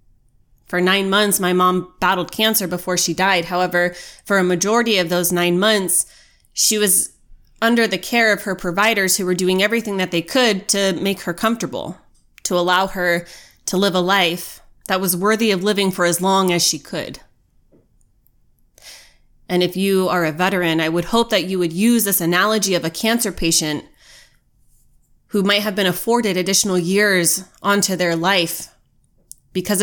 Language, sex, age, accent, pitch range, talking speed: English, female, 20-39, American, 170-200 Hz, 170 wpm